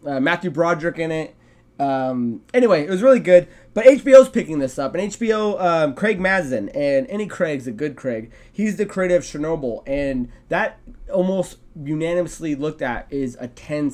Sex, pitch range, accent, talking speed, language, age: male, 140-180 Hz, American, 175 wpm, English, 20-39